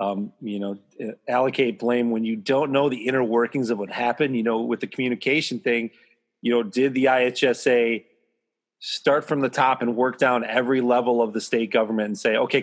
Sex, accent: male, American